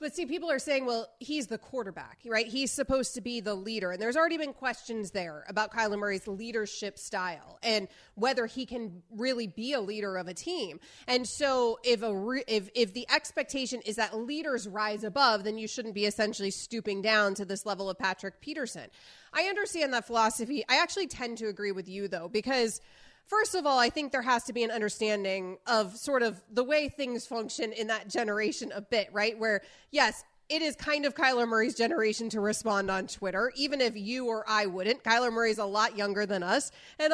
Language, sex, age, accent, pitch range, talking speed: English, female, 30-49, American, 210-265 Hz, 210 wpm